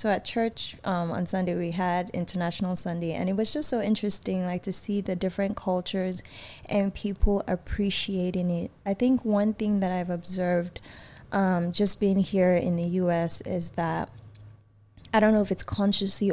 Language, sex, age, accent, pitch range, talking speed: English, female, 20-39, American, 180-205 Hz, 175 wpm